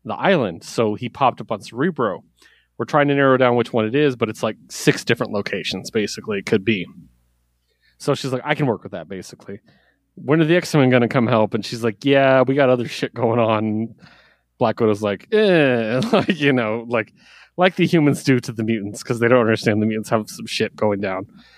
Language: English